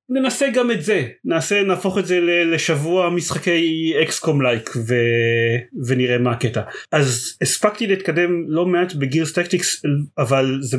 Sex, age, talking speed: male, 30-49, 140 wpm